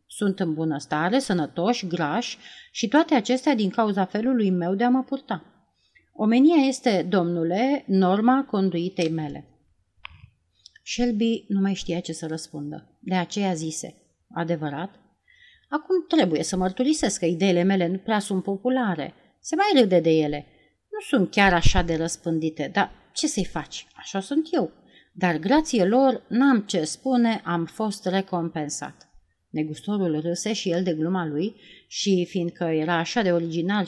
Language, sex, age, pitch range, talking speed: Romanian, female, 30-49, 170-235 Hz, 150 wpm